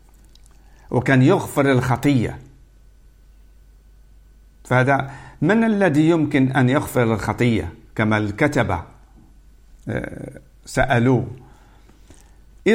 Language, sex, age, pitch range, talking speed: Arabic, male, 50-69, 120-155 Hz, 60 wpm